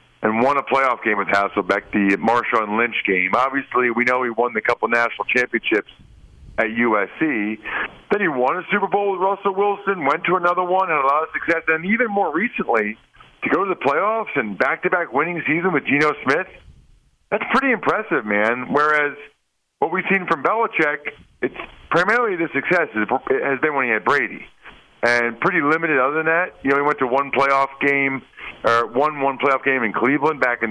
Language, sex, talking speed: English, male, 195 wpm